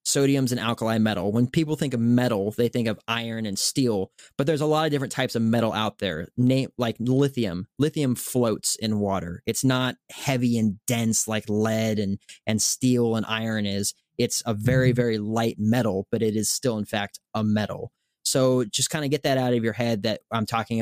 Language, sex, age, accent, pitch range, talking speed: English, male, 20-39, American, 110-140 Hz, 210 wpm